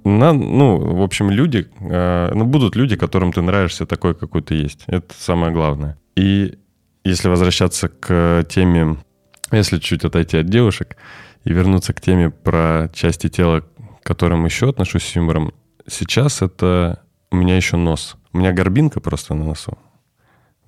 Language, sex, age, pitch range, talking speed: Russian, male, 20-39, 85-105 Hz, 160 wpm